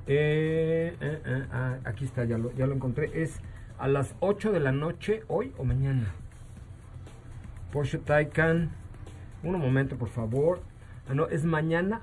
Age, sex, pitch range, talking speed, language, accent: 50-69, male, 120-165 Hz, 155 wpm, Spanish, Mexican